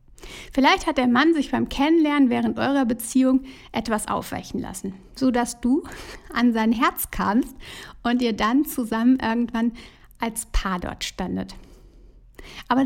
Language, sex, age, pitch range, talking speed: German, female, 60-79, 220-275 Hz, 135 wpm